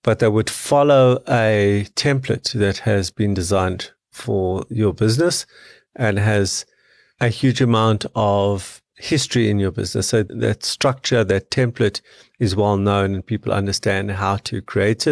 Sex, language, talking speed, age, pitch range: male, English, 145 wpm, 50-69, 100-120 Hz